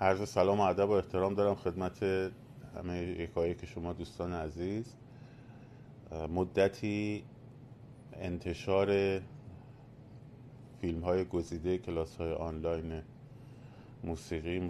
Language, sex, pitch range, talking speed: Persian, male, 85-125 Hz, 90 wpm